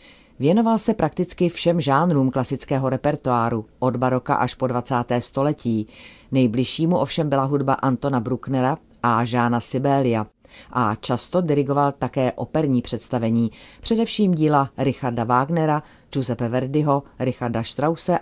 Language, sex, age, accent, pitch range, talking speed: Czech, female, 30-49, native, 125-150 Hz, 120 wpm